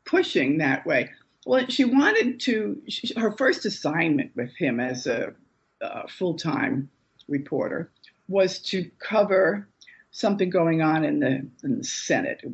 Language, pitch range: English, 160-235 Hz